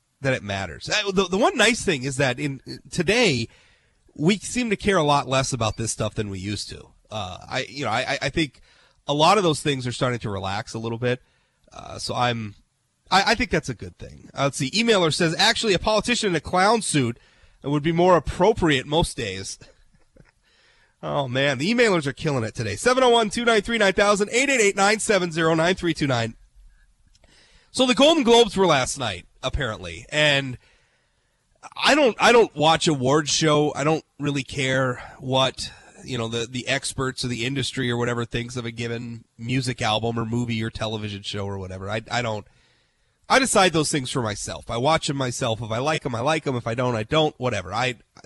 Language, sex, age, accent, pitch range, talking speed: English, male, 30-49, American, 115-165 Hz, 190 wpm